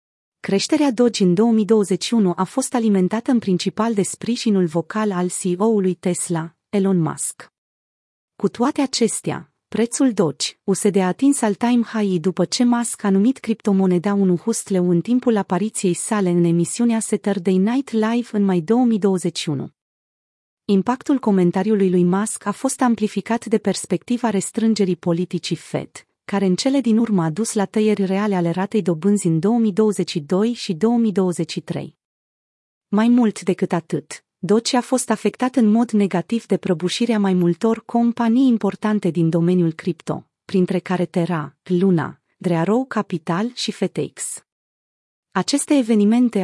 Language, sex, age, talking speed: Romanian, female, 30-49, 140 wpm